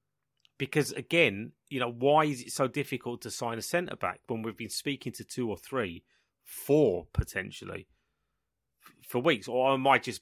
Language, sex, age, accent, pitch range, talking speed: English, male, 30-49, British, 105-140 Hz, 175 wpm